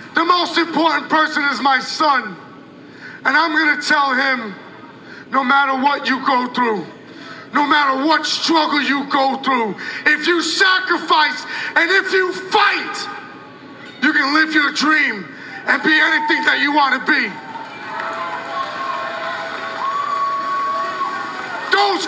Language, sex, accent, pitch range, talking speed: English, male, American, 300-375 Hz, 125 wpm